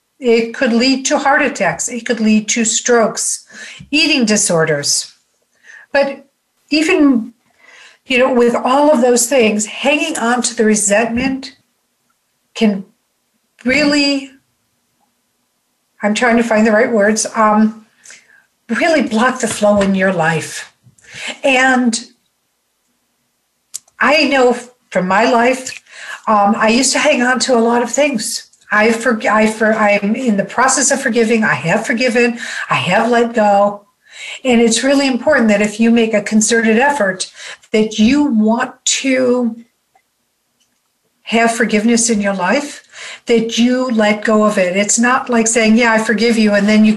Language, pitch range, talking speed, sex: English, 215-255 Hz, 145 wpm, female